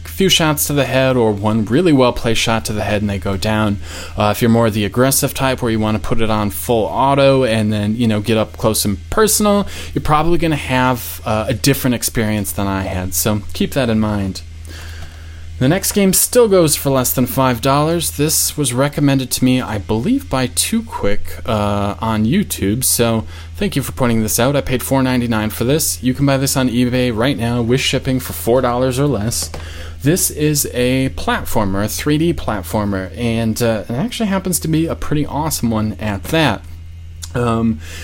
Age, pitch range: 20-39, 105-135 Hz